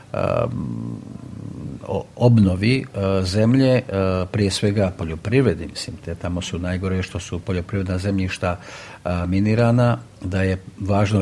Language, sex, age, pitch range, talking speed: Croatian, male, 50-69, 95-110 Hz, 95 wpm